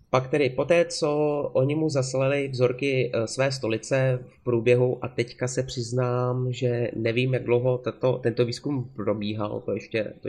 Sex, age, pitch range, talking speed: male, 30-49, 115-130 Hz, 155 wpm